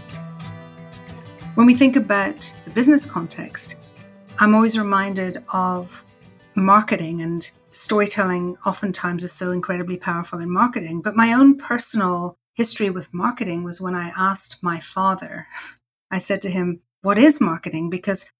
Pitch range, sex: 175-210 Hz, female